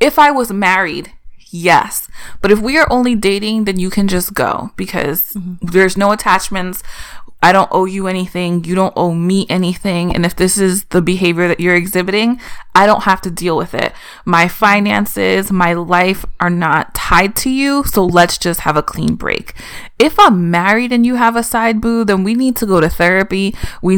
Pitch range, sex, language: 175-200 Hz, female, English